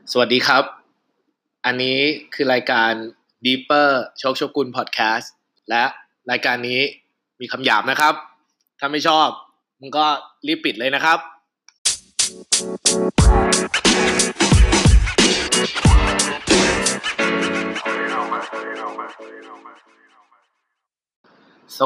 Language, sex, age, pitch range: Thai, male, 20-39, 125-165 Hz